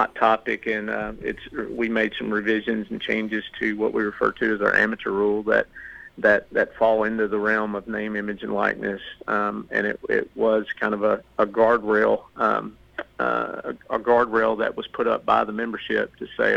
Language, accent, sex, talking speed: English, American, male, 200 wpm